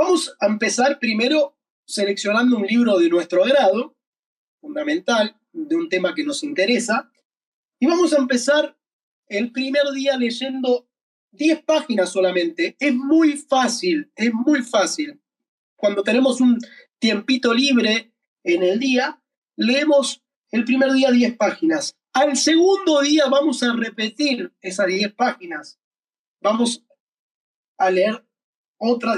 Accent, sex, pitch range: Argentinian, male, 220-285 Hz